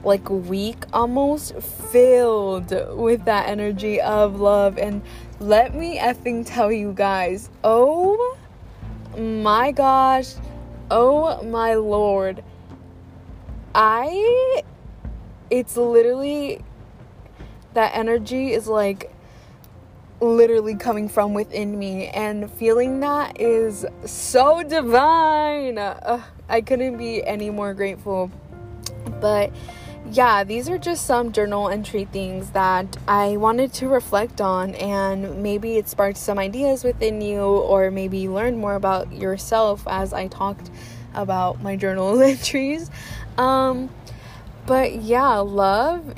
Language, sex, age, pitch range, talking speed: English, female, 20-39, 190-235 Hz, 115 wpm